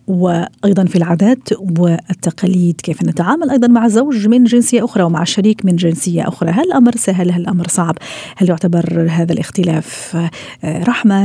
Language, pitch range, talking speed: Arabic, 175-220 Hz, 150 wpm